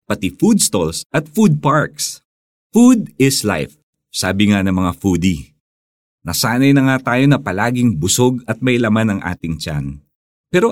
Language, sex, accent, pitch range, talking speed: Filipino, male, native, 90-130 Hz, 155 wpm